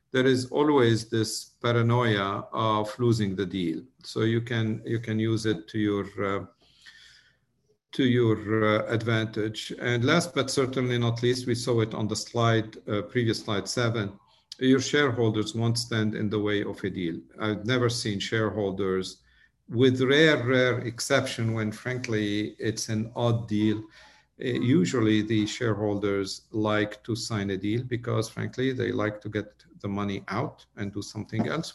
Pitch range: 105-135 Hz